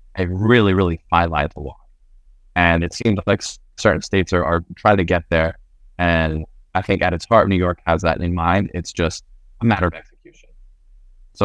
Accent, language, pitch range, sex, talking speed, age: American, English, 80-100 Hz, male, 195 wpm, 20-39